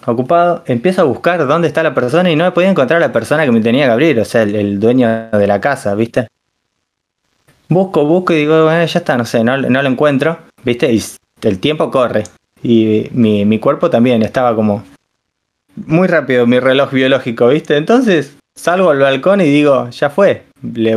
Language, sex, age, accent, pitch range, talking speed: Spanish, male, 20-39, Argentinian, 120-170 Hz, 195 wpm